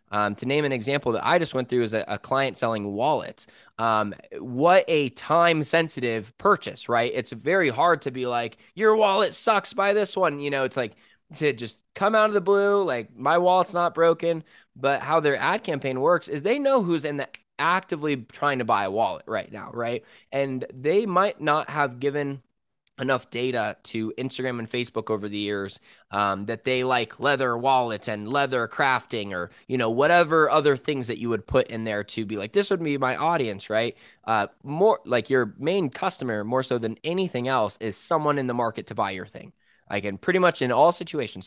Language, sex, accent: English, male, American